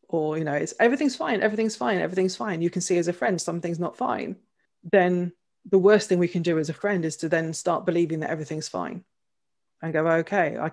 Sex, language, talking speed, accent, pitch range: female, English, 230 wpm, British, 160-185 Hz